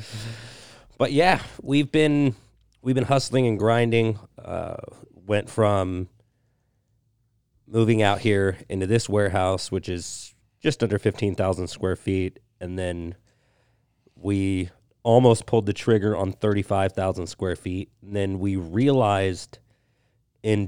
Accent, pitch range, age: American, 95-115 Hz, 30-49